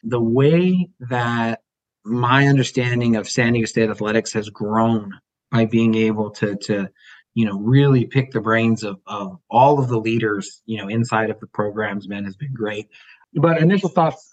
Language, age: English, 30-49